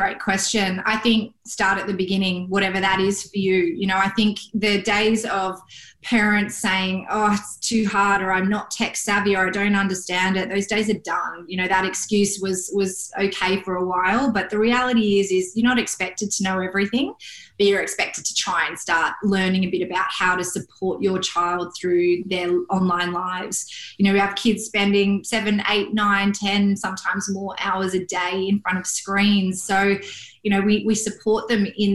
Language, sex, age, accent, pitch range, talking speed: English, female, 20-39, Australian, 185-210 Hz, 205 wpm